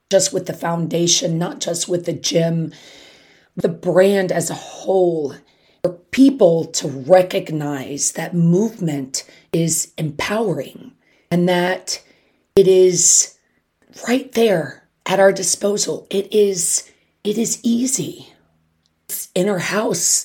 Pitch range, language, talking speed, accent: 170-205 Hz, English, 120 wpm, American